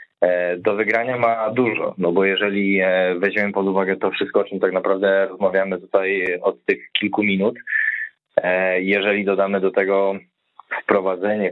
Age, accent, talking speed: 20-39, native, 140 wpm